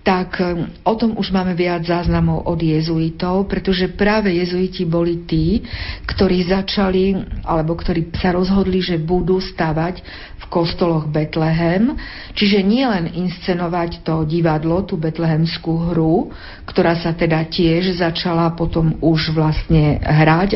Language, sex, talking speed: Slovak, female, 130 wpm